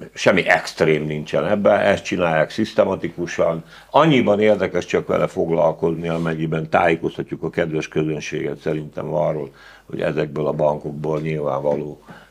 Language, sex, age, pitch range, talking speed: Hungarian, male, 60-79, 75-105 Hz, 115 wpm